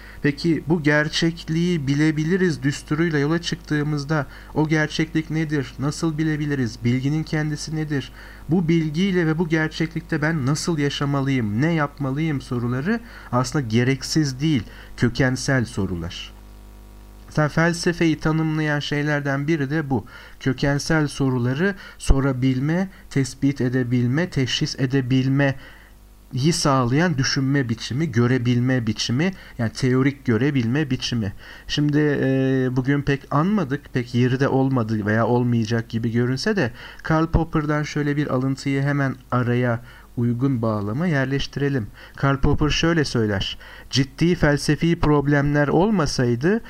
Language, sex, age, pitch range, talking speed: Turkish, male, 50-69, 125-155 Hz, 110 wpm